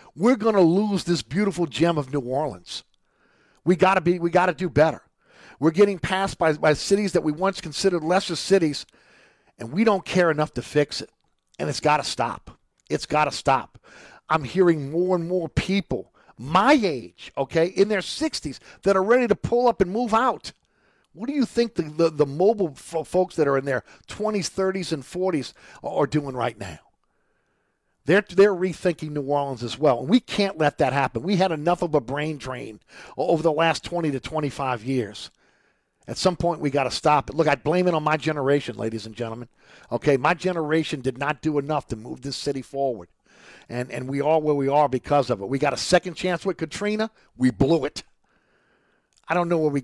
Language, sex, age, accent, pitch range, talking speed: English, male, 50-69, American, 140-180 Hz, 205 wpm